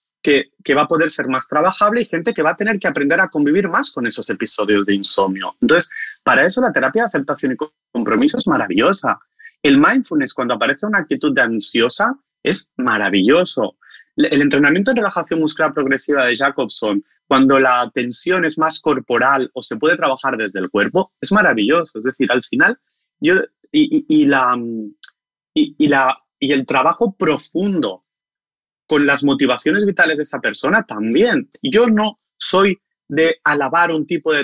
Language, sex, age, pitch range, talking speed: Spanish, male, 30-49, 140-200 Hz, 175 wpm